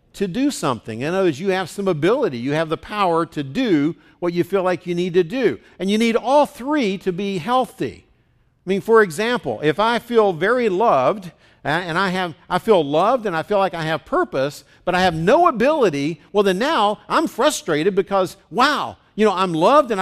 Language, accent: English, American